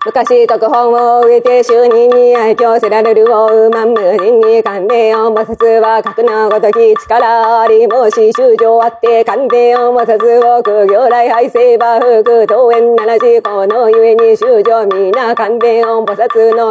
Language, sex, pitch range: Japanese, female, 225-250 Hz